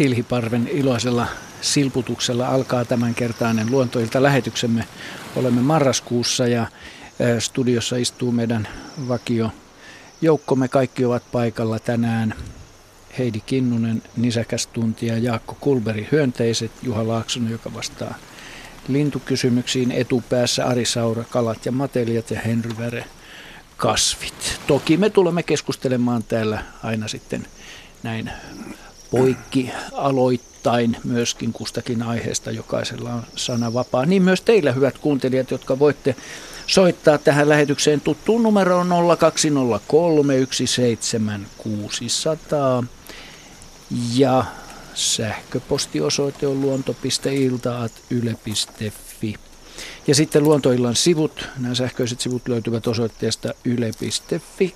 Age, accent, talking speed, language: 50-69, native, 90 wpm, Finnish